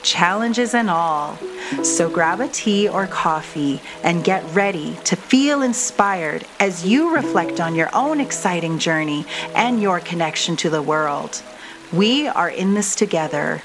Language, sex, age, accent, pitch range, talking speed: English, female, 30-49, American, 170-225 Hz, 150 wpm